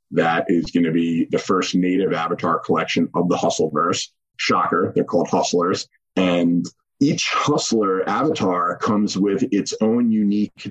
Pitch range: 85-100 Hz